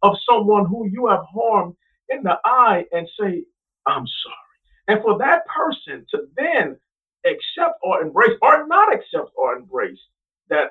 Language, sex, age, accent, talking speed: English, male, 50-69, American, 155 wpm